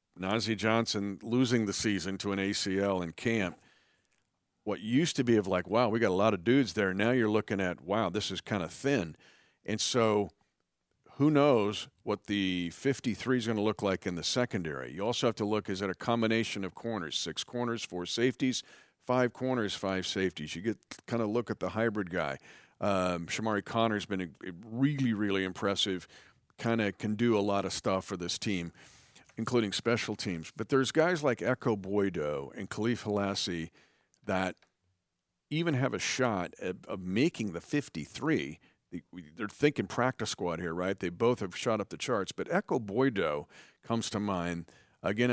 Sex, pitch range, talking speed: male, 95-115 Hz, 180 wpm